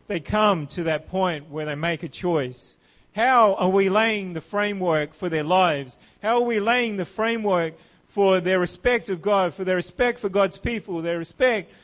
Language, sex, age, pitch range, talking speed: English, male, 40-59, 145-215 Hz, 195 wpm